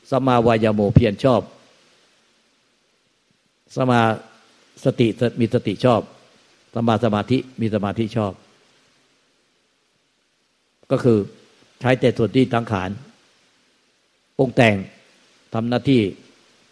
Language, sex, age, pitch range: Thai, male, 60-79, 105-125 Hz